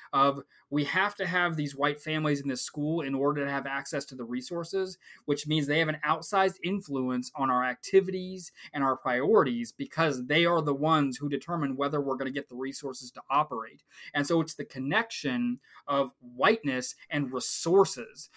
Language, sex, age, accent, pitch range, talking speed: English, male, 20-39, American, 135-165 Hz, 185 wpm